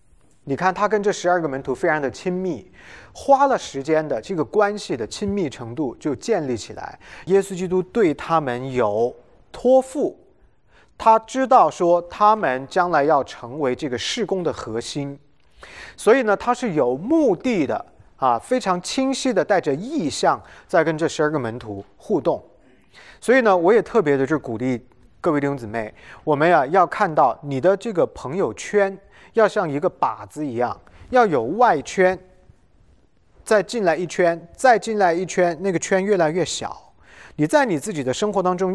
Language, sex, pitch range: English, male, 150-225 Hz